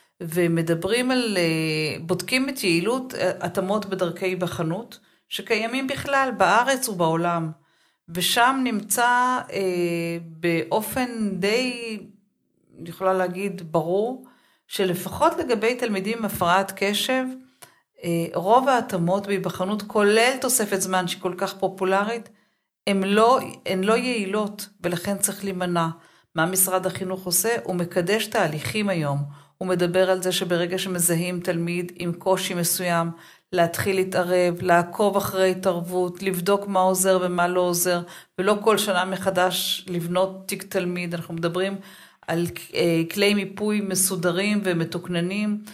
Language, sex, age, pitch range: Hebrew, female, 50-69, 175-210 Hz